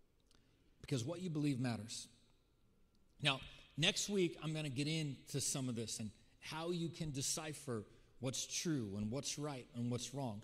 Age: 40-59